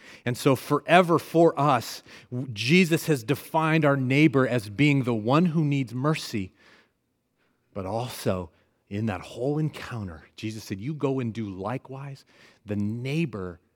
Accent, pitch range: American, 95-125 Hz